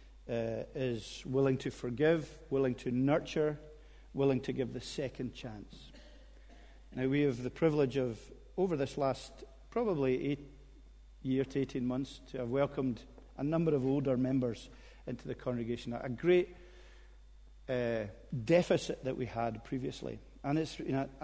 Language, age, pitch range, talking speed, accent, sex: English, 50-69, 115-140 Hz, 145 wpm, British, male